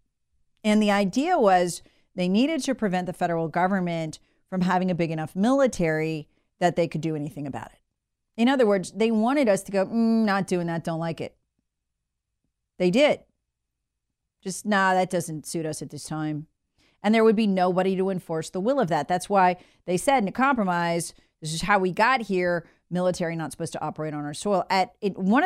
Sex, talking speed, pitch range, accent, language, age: female, 200 wpm, 170-215 Hz, American, English, 40-59